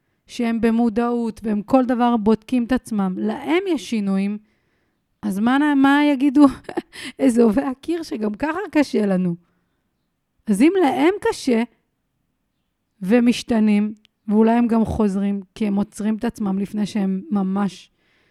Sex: female